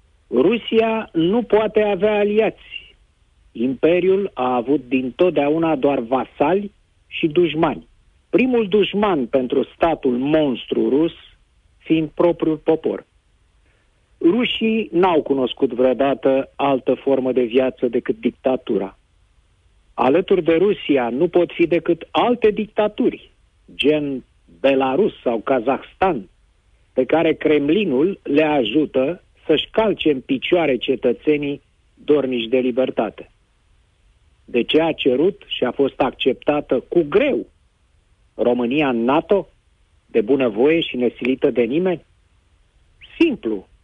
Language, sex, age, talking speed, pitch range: Romanian, male, 50-69, 105 wpm, 125-170 Hz